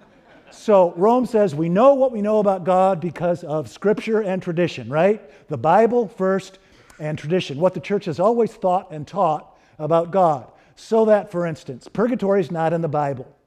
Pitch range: 155-215 Hz